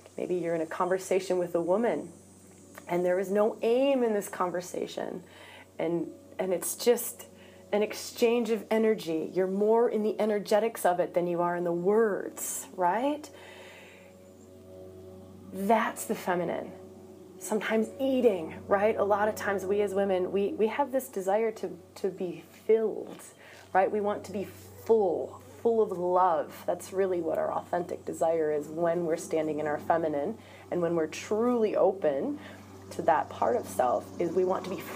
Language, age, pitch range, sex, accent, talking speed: English, 30-49, 170-220 Hz, female, American, 165 wpm